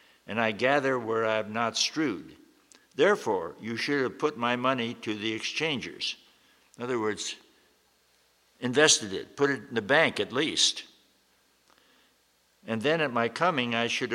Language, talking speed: English, 155 wpm